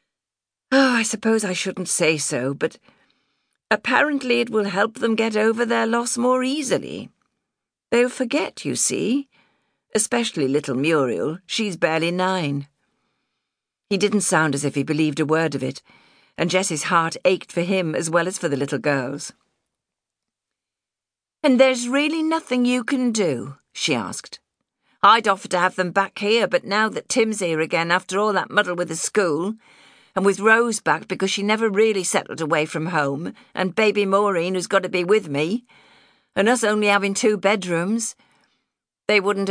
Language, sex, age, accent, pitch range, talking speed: English, female, 50-69, British, 170-225 Hz, 165 wpm